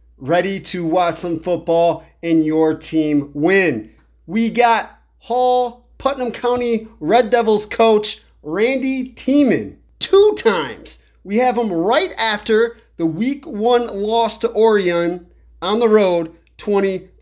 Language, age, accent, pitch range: English, 30-49, American, 165-230 Hz